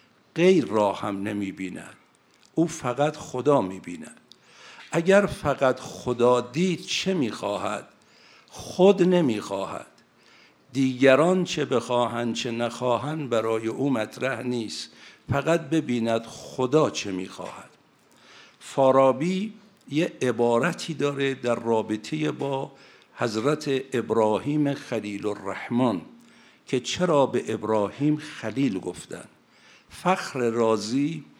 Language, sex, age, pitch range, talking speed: Persian, male, 60-79, 115-150 Hz, 95 wpm